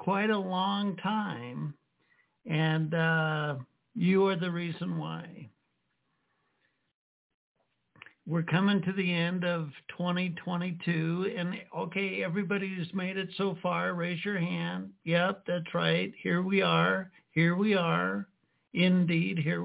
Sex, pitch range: male, 160-190 Hz